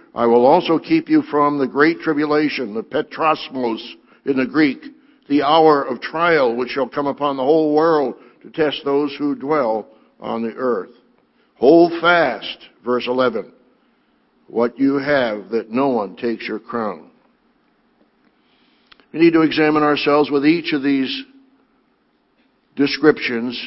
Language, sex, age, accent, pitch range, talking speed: English, male, 60-79, American, 125-160 Hz, 140 wpm